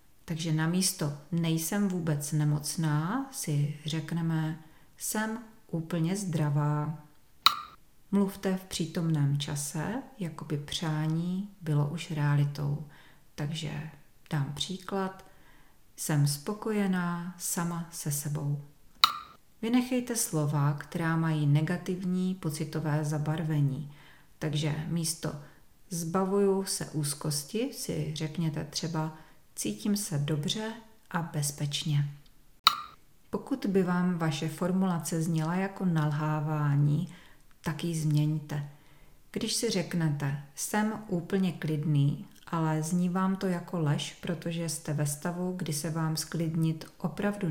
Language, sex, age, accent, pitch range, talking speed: Czech, female, 40-59, native, 150-180 Hz, 100 wpm